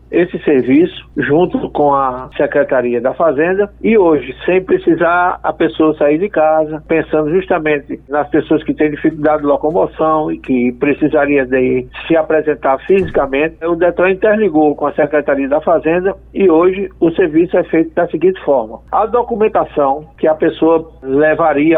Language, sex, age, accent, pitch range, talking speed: Portuguese, male, 60-79, Brazilian, 145-195 Hz, 155 wpm